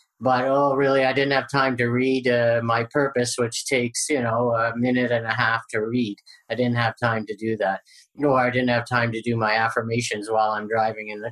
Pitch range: 120-145 Hz